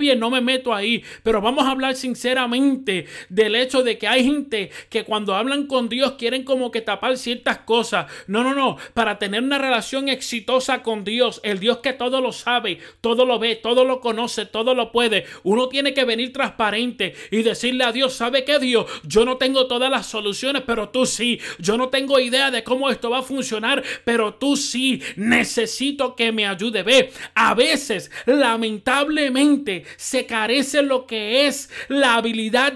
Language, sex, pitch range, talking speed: Spanish, male, 220-270 Hz, 185 wpm